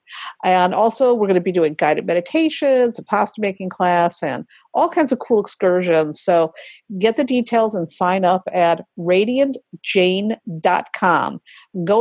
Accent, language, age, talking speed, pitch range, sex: American, English, 50-69, 140 wpm, 180-250 Hz, female